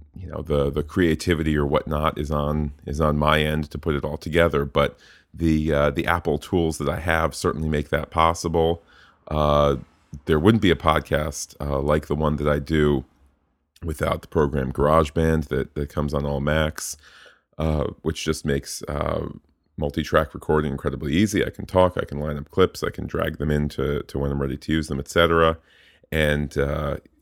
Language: English